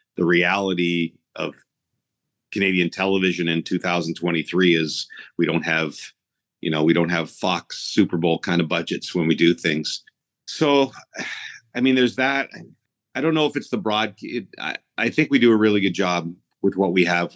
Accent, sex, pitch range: American, male, 90-110 Hz